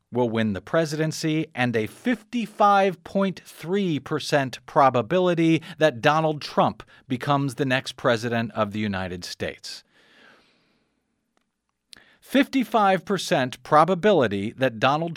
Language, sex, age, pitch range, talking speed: English, male, 40-59, 125-180 Hz, 100 wpm